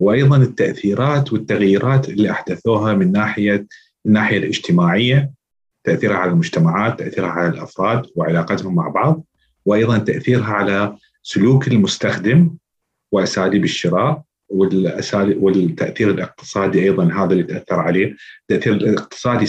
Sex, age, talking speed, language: male, 40-59, 105 wpm, Arabic